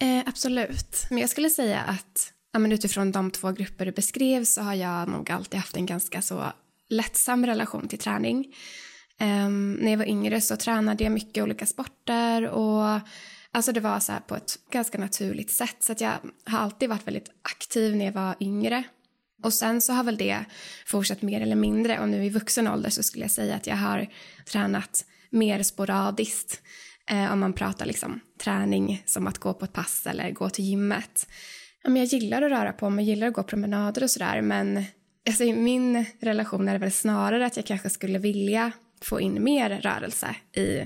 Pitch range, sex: 195-230 Hz, female